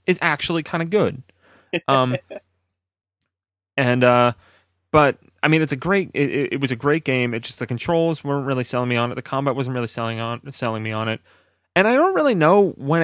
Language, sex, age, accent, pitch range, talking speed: English, male, 30-49, American, 115-145 Hz, 210 wpm